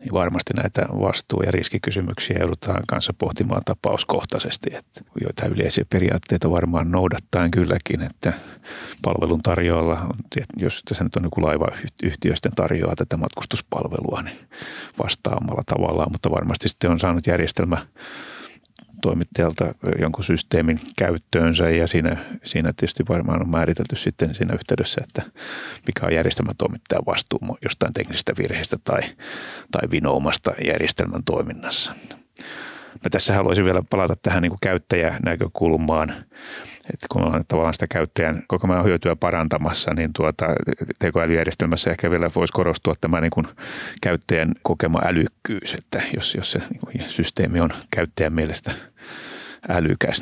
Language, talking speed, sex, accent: Finnish, 125 wpm, male, native